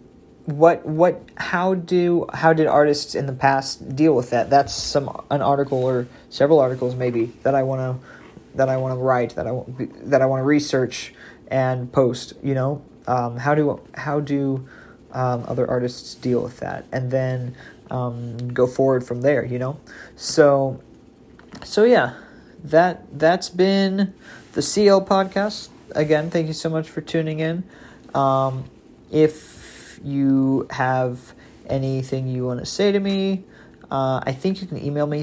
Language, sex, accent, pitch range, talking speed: English, male, American, 125-150 Hz, 165 wpm